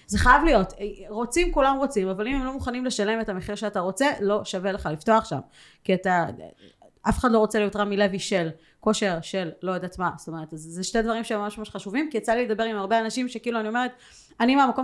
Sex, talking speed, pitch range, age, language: female, 235 wpm, 195-245 Hz, 30-49, Hebrew